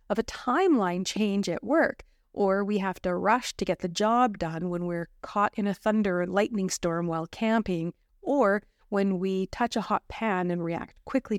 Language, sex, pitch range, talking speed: English, female, 180-225 Hz, 195 wpm